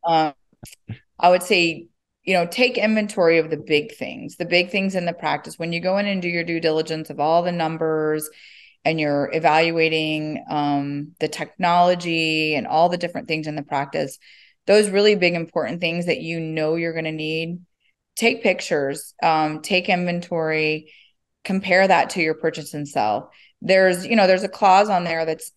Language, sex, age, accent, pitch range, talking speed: English, female, 30-49, American, 155-180 Hz, 185 wpm